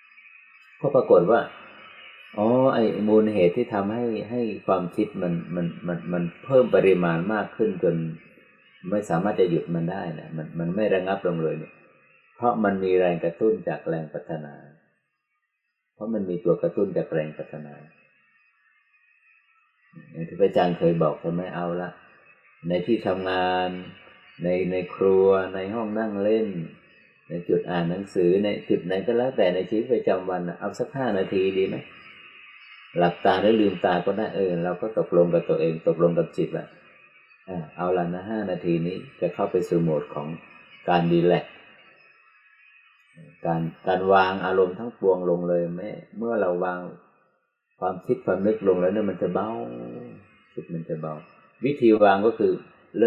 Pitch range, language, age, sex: 85-105 Hz, Thai, 30-49, male